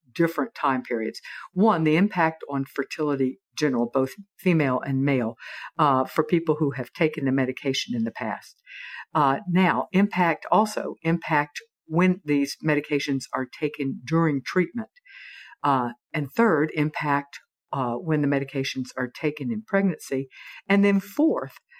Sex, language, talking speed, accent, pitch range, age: female, English, 140 wpm, American, 135-175 Hz, 60-79